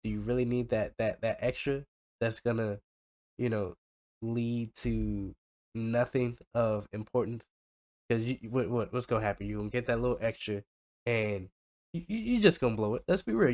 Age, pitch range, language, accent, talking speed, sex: 10-29, 95-120 Hz, English, American, 170 wpm, male